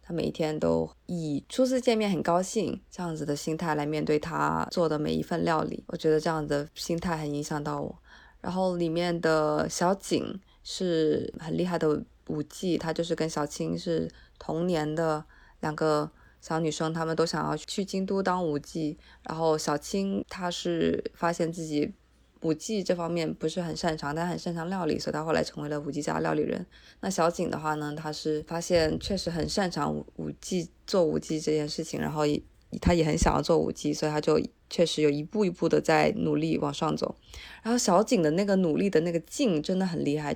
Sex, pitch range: female, 150-180 Hz